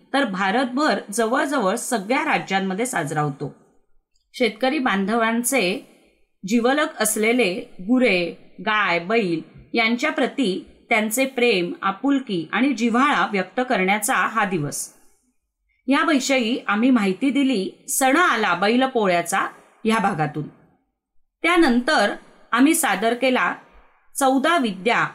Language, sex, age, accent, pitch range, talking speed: Marathi, female, 20-39, native, 205-275 Hz, 100 wpm